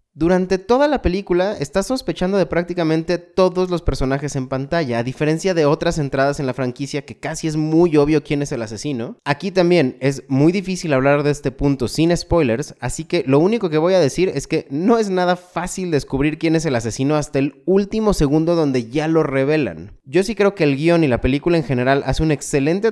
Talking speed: 215 wpm